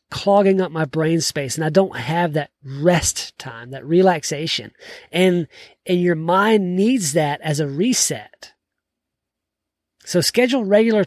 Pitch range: 155-200 Hz